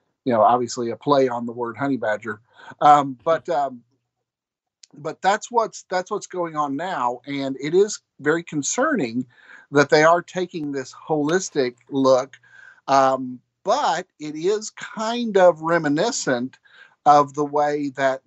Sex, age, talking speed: male, 50-69, 145 wpm